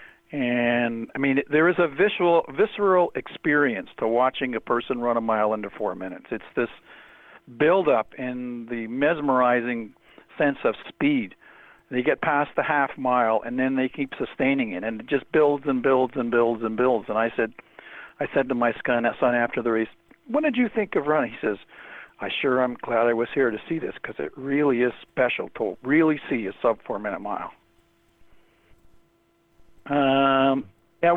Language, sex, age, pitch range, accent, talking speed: English, male, 60-79, 125-175 Hz, American, 175 wpm